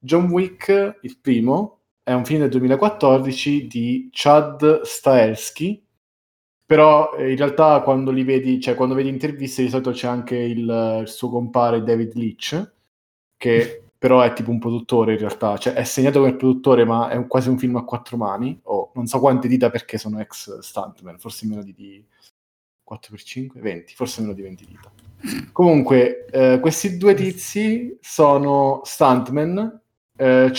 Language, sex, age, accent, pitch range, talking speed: Italian, male, 20-39, native, 115-140 Hz, 165 wpm